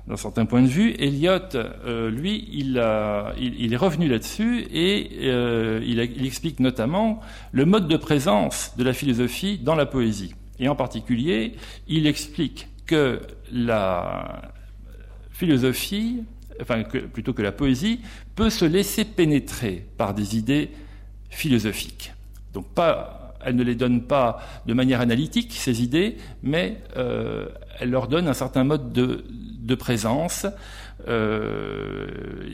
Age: 50-69